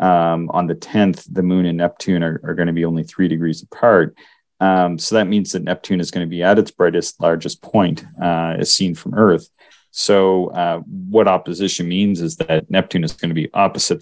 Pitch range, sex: 85-100 Hz, male